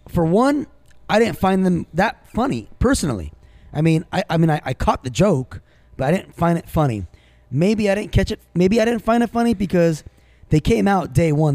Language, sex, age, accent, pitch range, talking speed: English, male, 20-39, American, 125-180 Hz, 220 wpm